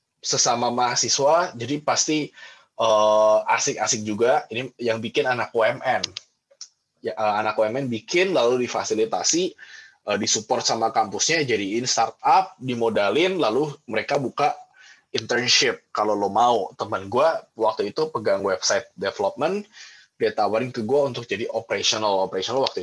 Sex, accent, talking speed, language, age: male, native, 130 wpm, Indonesian, 20-39